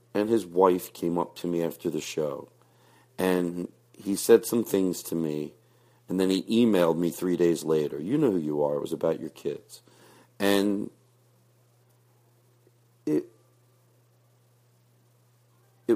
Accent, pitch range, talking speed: American, 85-120 Hz, 140 wpm